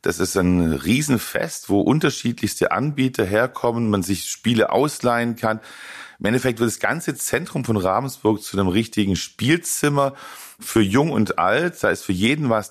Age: 40-59